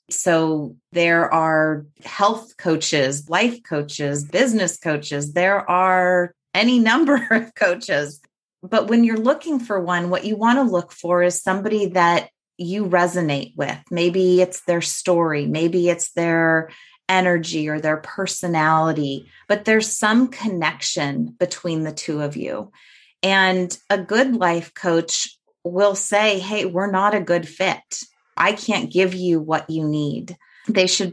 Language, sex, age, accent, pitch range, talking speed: English, female, 30-49, American, 150-190 Hz, 145 wpm